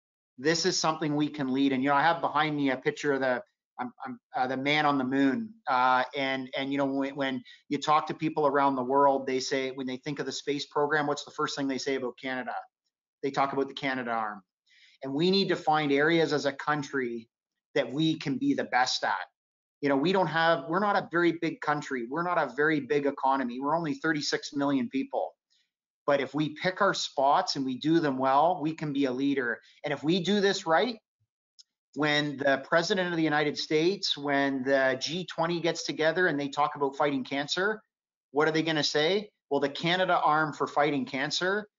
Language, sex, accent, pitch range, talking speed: English, male, American, 135-160 Hz, 220 wpm